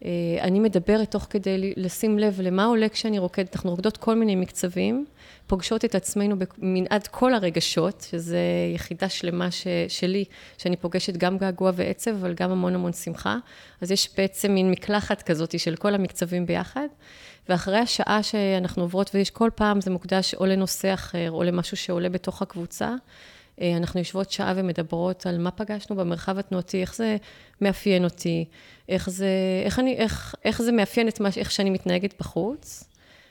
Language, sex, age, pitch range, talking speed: Hebrew, female, 30-49, 180-205 Hz, 160 wpm